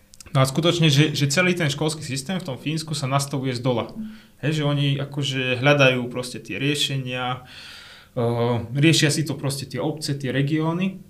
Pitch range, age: 125-150 Hz, 20-39